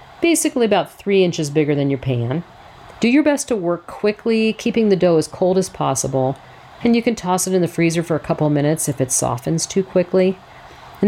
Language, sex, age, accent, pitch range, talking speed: English, female, 50-69, American, 145-200 Hz, 210 wpm